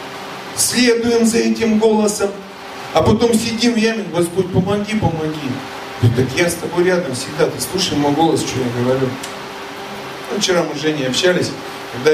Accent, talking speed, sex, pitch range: native, 160 wpm, male, 130-180 Hz